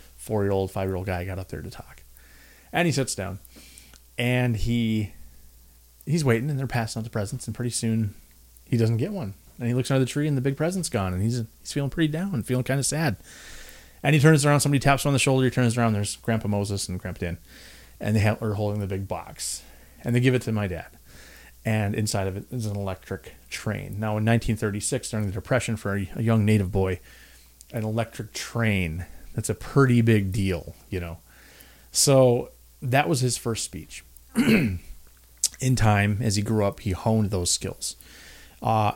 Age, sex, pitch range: 30-49, male, 90-125 Hz